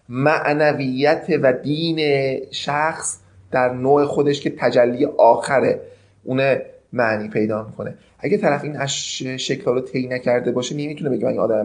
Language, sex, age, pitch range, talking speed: Persian, male, 30-49, 125-150 Hz, 135 wpm